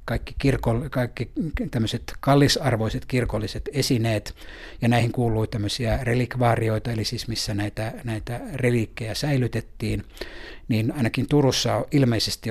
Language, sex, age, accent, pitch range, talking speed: Finnish, male, 60-79, native, 105-125 Hz, 110 wpm